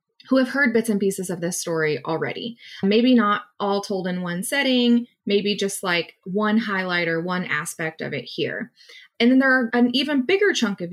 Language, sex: English, female